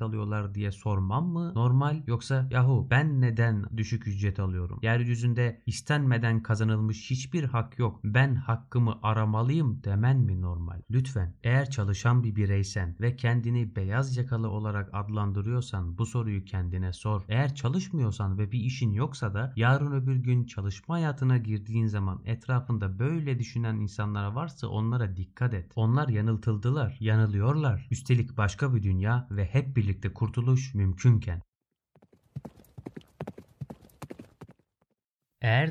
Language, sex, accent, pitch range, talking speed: Turkish, male, native, 105-130 Hz, 125 wpm